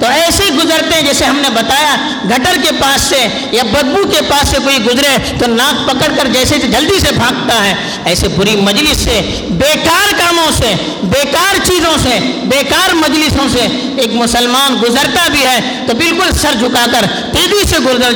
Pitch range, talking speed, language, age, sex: 180-280 Hz, 180 wpm, Urdu, 50-69, female